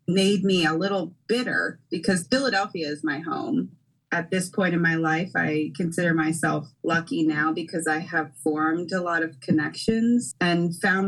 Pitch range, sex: 150-170 Hz, female